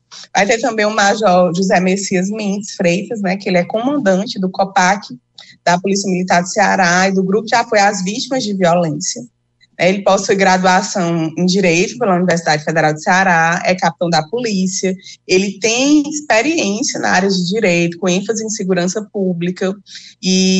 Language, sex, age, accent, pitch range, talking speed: Portuguese, female, 20-39, Brazilian, 180-220 Hz, 165 wpm